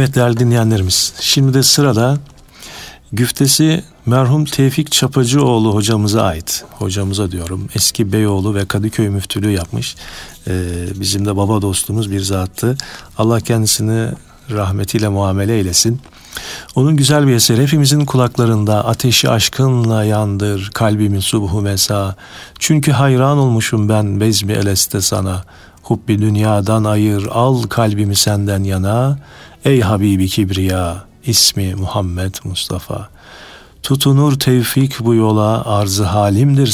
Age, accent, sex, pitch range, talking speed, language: 50-69, native, male, 100-125 Hz, 115 wpm, Turkish